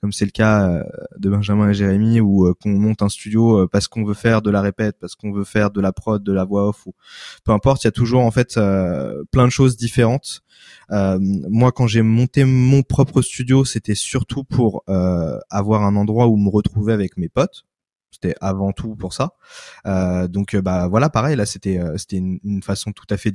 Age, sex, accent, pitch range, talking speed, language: 20-39, male, French, 100-120 Hz, 220 wpm, French